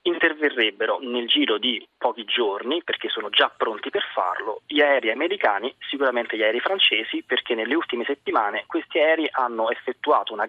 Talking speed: 160 wpm